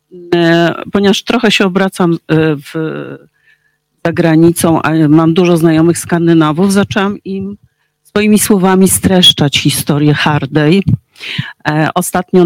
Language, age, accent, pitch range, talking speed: Polish, 50-69, native, 155-190 Hz, 90 wpm